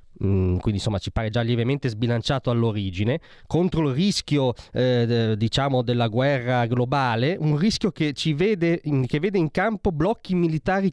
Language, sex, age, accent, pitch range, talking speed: Italian, male, 30-49, native, 120-175 Hz, 165 wpm